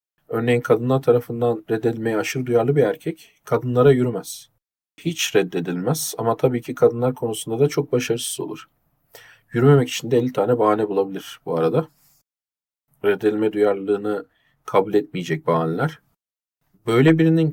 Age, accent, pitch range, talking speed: 40-59, native, 105-130 Hz, 125 wpm